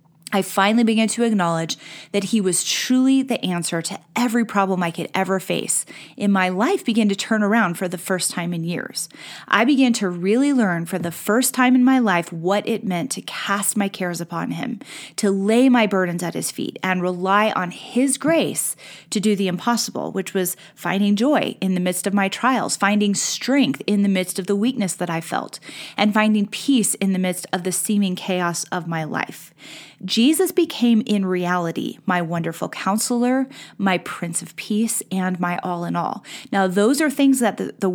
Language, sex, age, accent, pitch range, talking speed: English, female, 30-49, American, 180-225 Hz, 200 wpm